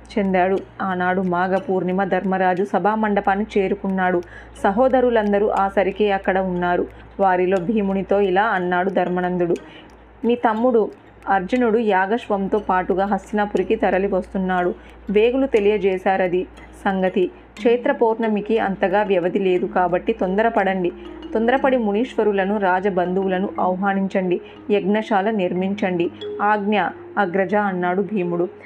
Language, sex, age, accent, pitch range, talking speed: Telugu, female, 20-39, native, 185-215 Hz, 90 wpm